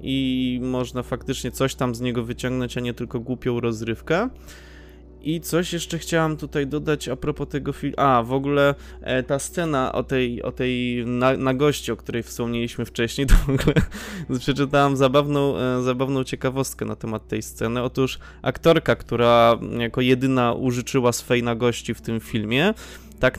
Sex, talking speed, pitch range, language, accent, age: male, 160 wpm, 120-145 Hz, Polish, native, 20-39